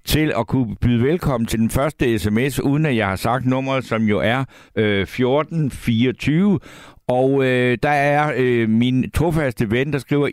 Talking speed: 155 wpm